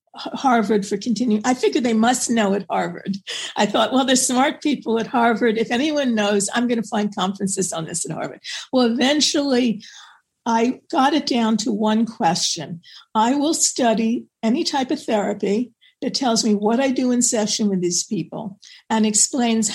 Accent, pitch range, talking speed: American, 210-270 Hz, 180 wpm